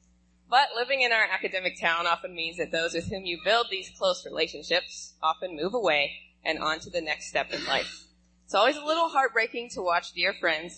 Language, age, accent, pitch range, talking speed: English, 20-39, American, 145-200 Hz, 205 wpm